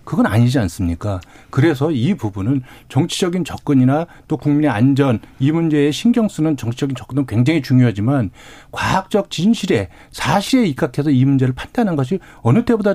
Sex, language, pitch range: male, Korean, 130-195 Hz